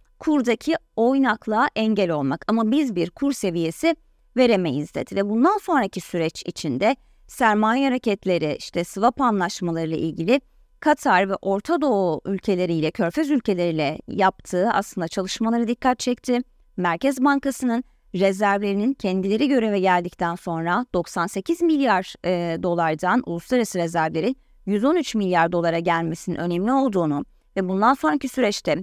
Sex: female